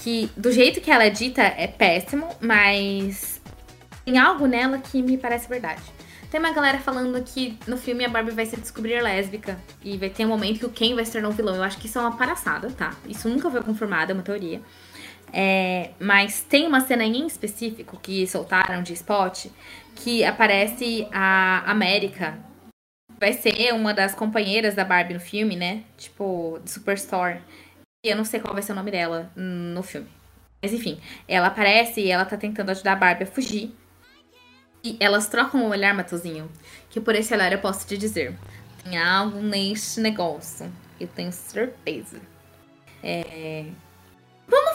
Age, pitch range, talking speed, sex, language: 10-29, 190-245 Hz, 180 wpm, female, Portuguese